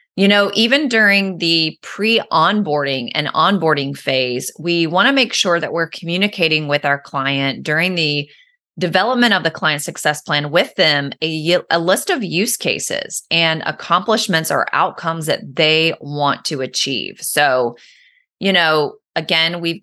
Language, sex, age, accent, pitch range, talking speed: English, female, 30-49, American, 150-195 Hz, 150 wpm